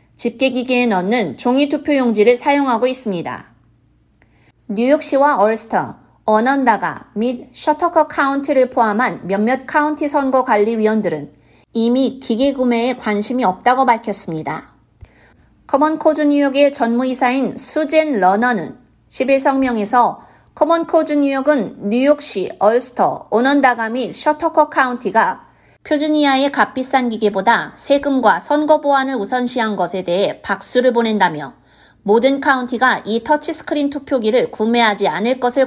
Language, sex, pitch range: Korean, female, 225-285 Hz